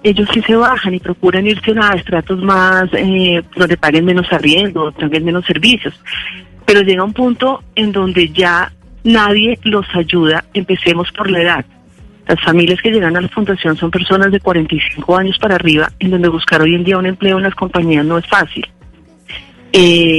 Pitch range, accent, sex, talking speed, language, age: 165-200 Hz, Colombian, female, 180 wpm, Spanish, 40-59